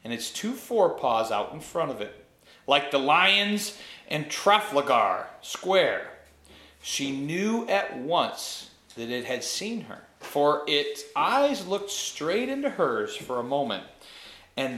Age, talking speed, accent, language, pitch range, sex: 40-59, 140 wpm, American, English, 120-190 Hz, male